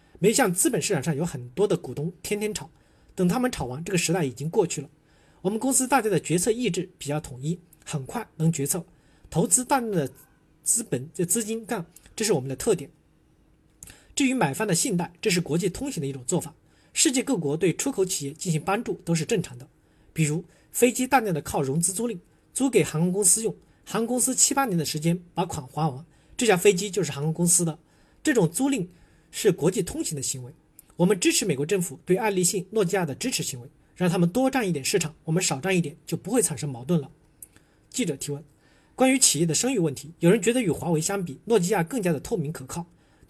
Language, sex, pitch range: Chinese, male, 150-205 Hz